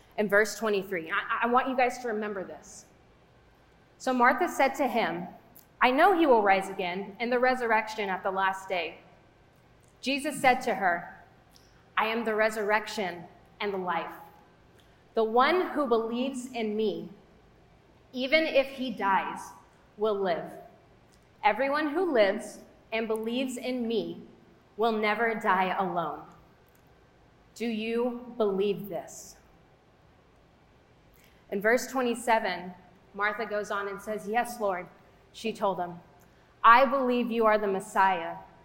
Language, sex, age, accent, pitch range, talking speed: English, female, 30-49, American, 200-245 Hz, 135 wpm